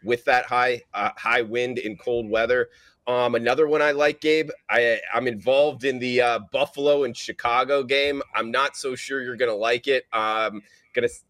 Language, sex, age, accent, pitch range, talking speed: English, male, 30-49, American, 120-155 Hz, 185 wpm